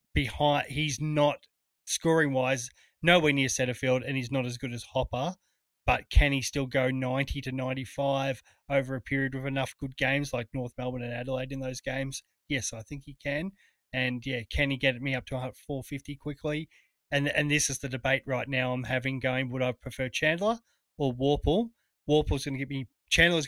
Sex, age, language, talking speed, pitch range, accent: male, 20-39, English, 195 wpm, 130-145 Hz, Australian